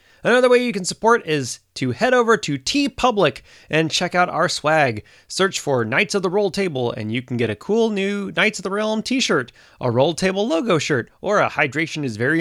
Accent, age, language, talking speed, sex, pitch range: American, 30-49, English, 220 wpm, male, 125-195 Hz